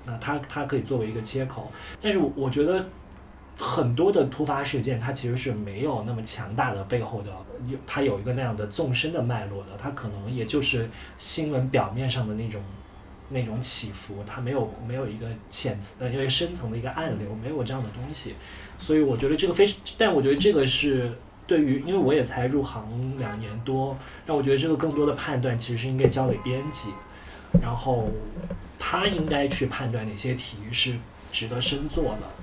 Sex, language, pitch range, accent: male, Chinese, 110-140 Hz, native